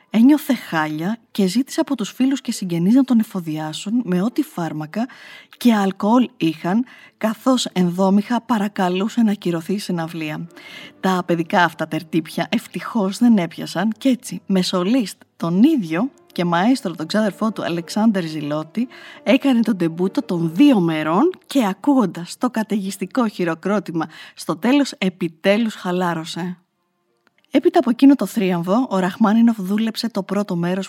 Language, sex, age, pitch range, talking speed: Greek, female, 20-39, 175-240 Hz, 140 wpm